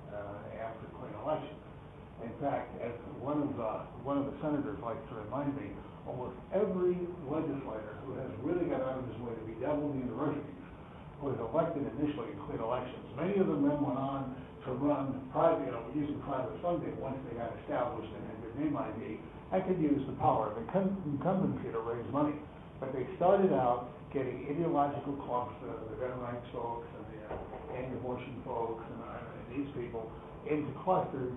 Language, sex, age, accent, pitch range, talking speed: English, male, 60-79, American, 115-150 Hz, 180 wpm